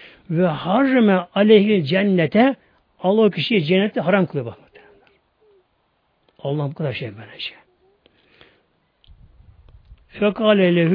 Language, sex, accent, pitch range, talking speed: Turkish, male, native, 170-235 Hz, 90 wpm